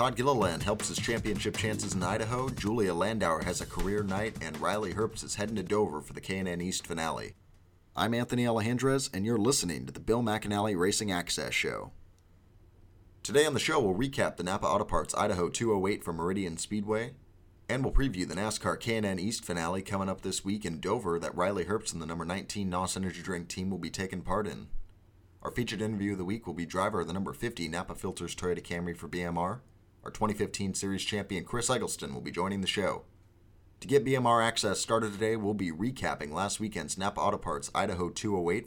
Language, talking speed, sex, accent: English, 200 wpm, male, American